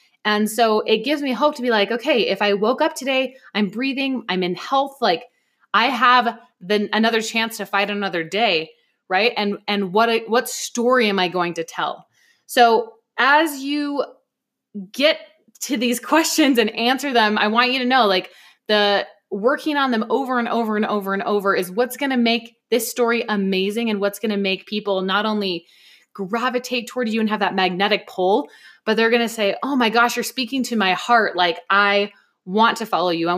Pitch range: 200-255 Hz